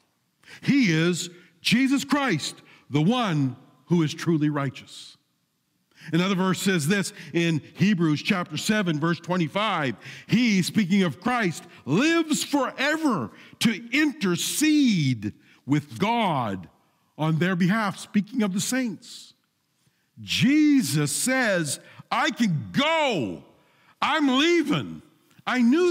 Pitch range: 145-215 Hz